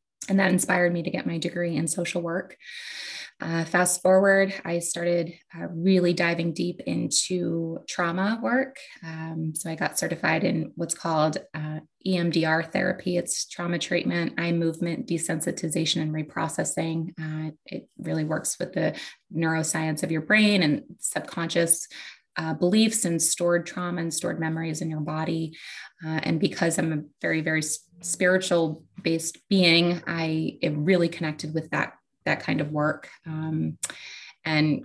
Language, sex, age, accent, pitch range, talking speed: English, female, 20-39, American, 160-175 Hz, 150 wpm